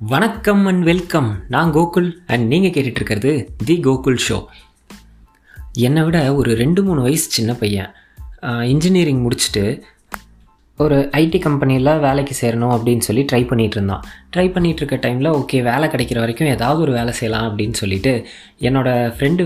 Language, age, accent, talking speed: Tamil, 20-39, native, 140 wpm